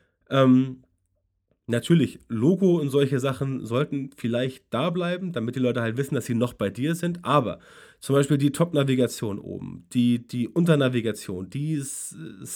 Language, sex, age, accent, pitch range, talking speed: German, male, 30-49, German, 125-155 Hz, 155 wpm